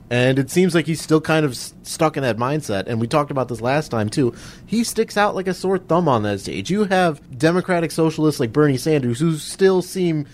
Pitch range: 115-155 Hz